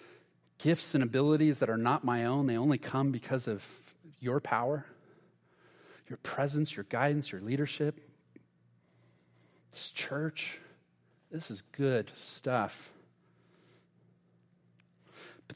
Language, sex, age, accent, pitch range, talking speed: English, male, 40-59, American, 115-170 Hz, 110 wpm